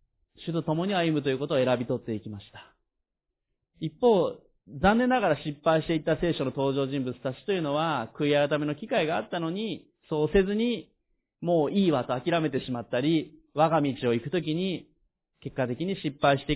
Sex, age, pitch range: male, 30-49, 135-185 Hz